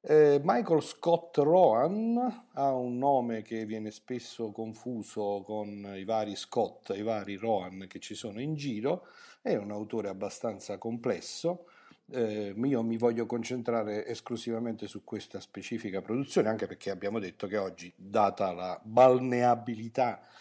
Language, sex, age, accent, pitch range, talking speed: Italian, male, 50-69, native, 100-125 Hz, 140 wpm